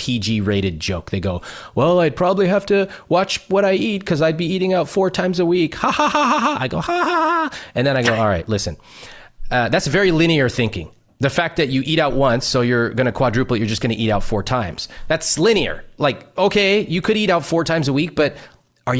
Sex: male